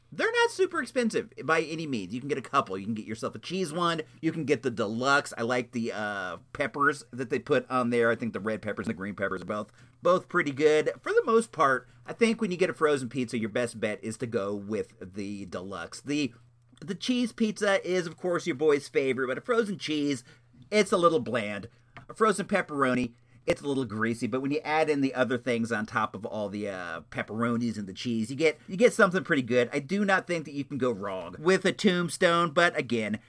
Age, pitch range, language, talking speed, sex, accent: 40-59, 115-175 Hz, English, 240 wpm, male, American